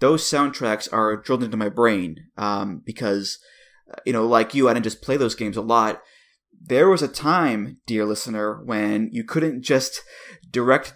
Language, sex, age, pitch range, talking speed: English, male, 30-49, 115-150 Hz, 175 wpm